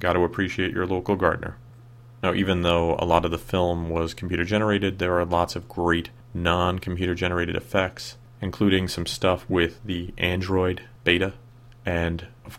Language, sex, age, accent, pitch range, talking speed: English, male, 30-49, American, 85-115 Hz, 155 wpm